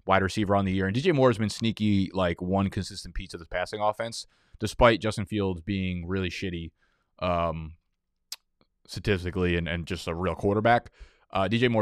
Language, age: English, 20-39